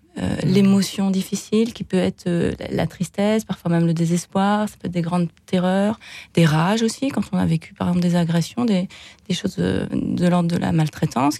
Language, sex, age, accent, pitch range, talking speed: French, female, 30-49, French, 175-215 Hz, 210 wpm